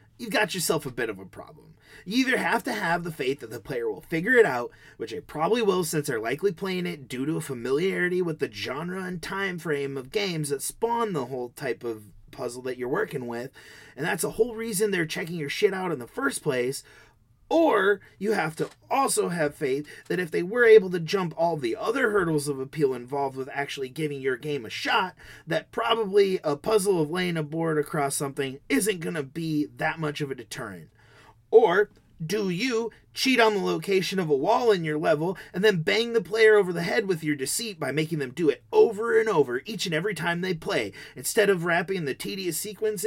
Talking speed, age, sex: 220 wpm, 30-49, male